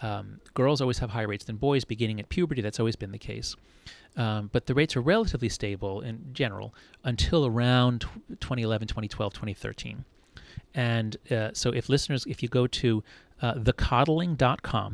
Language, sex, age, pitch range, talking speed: English, male, 30-49, 110-135 Hz, 165 wpm